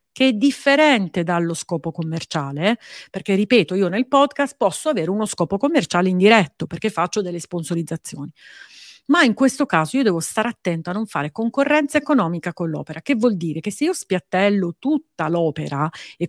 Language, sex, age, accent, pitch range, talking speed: Italian, female, 40-59, native, 175-230 Hz, 170 wpm